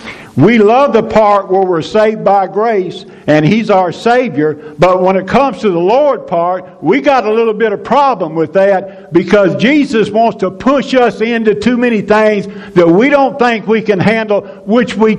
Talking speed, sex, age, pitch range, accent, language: 195 wpm, male, 60-79, 195-245 Hz, American, English